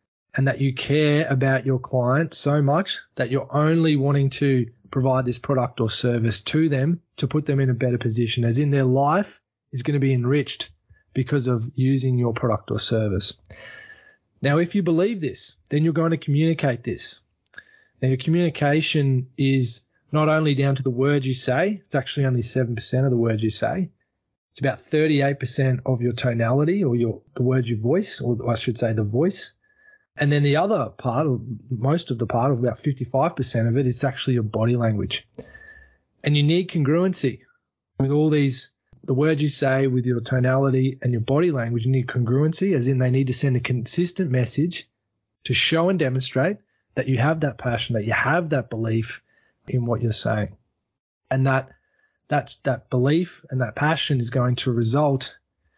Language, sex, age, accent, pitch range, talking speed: English, male, 20-39, Australian, 120-150 Hz, 185 wpm